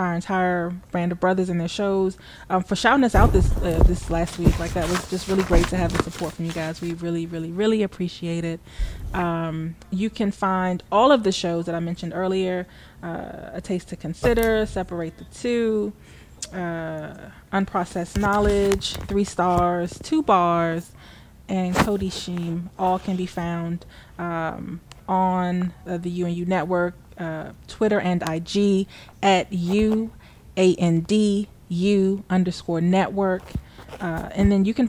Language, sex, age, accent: English, female, 20-39, American